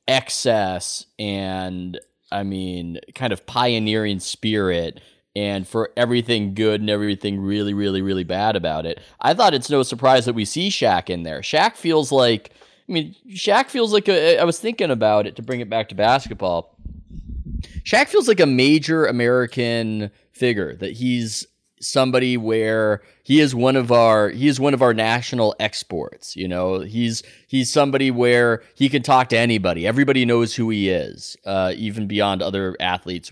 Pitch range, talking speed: 95-120 Hz, 170 wpm